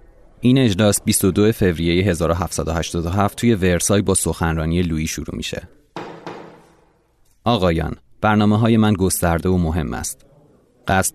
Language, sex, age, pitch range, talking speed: Persian, male, 30-49, 85-110 Hz, 115 wpm